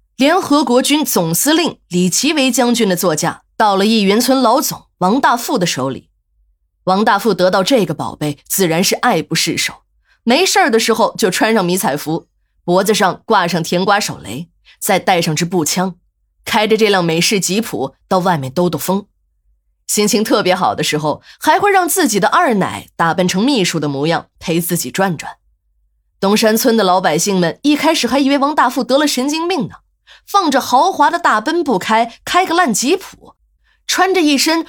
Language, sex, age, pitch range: Chinese, female, 20-39, 165-270 Hz